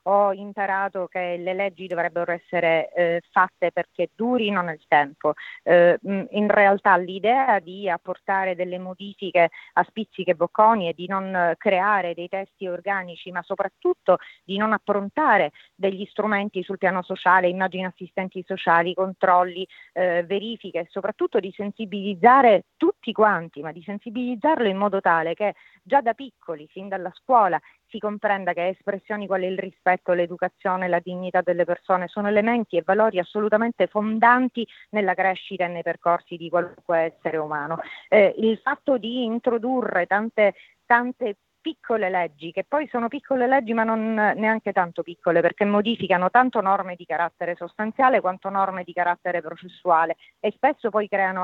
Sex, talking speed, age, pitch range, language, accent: female, 150 wpm, 30-49, 175-210 Hz, Italian, native